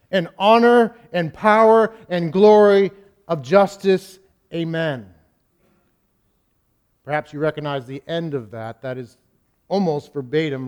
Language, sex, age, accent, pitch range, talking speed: English, male, 50-69, American, 145-175 Hz, 110 wpm